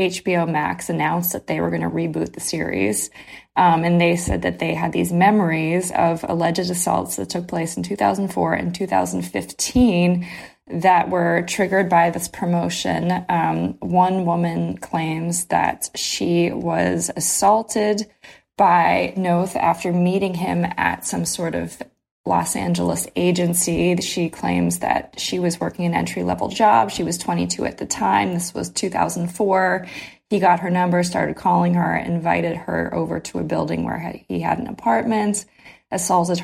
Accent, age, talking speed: American, 20-39, 155 wpm